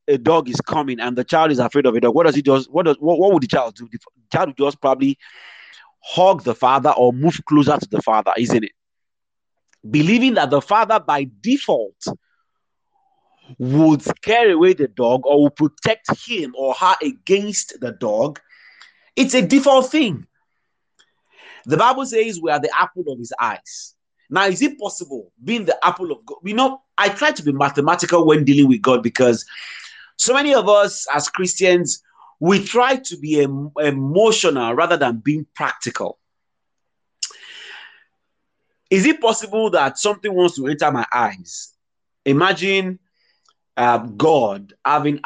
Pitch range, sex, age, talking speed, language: 140-220 Hz, male, 30-49, 165 wpm, English